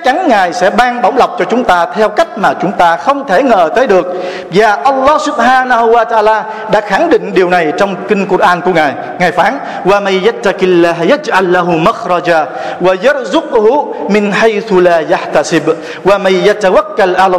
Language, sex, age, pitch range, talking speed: Vietnamese, male, 50-69, 180-240 Hz, 210 wpm